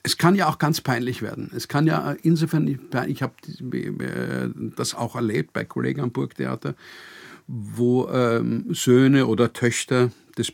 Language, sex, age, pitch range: German, male, 50-69, 115-140 Hz